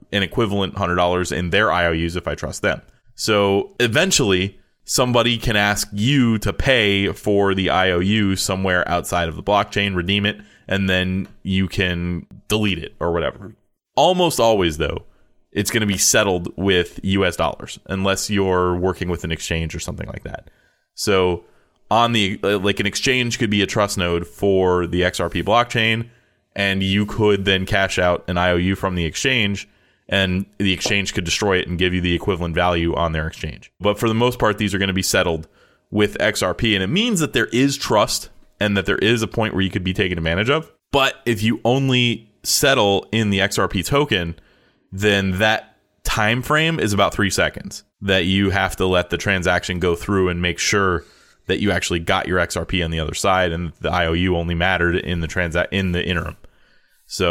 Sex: male